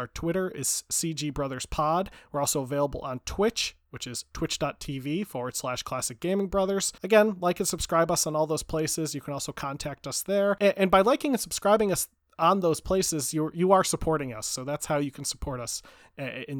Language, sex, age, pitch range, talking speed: English, male, 30-49, 135-180 Hz, 200 wpm